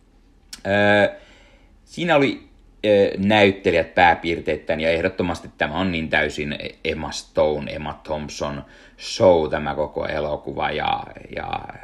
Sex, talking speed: male, 100 wpm